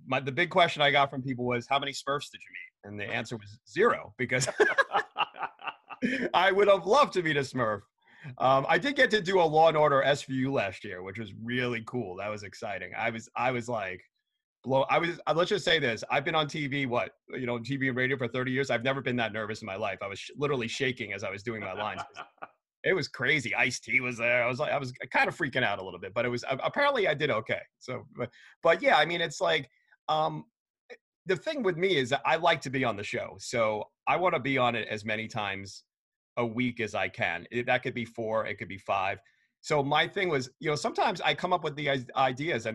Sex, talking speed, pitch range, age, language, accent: male, 245 wpm, 120-155 Hz, 30-49, English, American